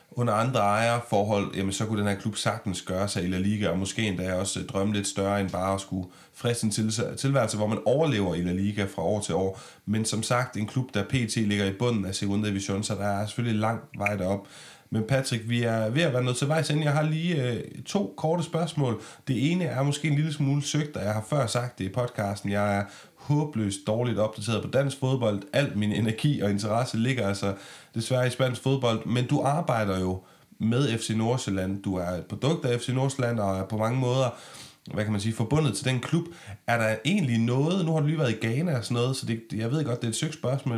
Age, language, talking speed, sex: 30-49, Danish, 235 wpm, male